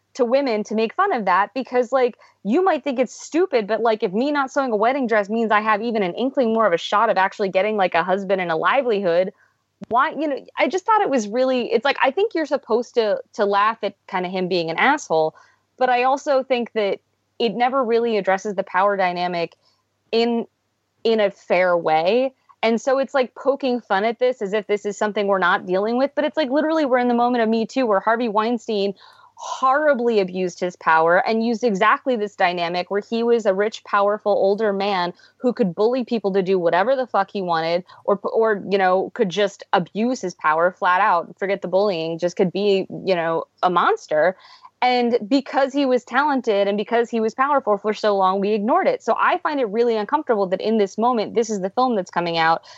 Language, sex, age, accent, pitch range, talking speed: English, female, 20-39, American, 195-255 Hz, 225 wpm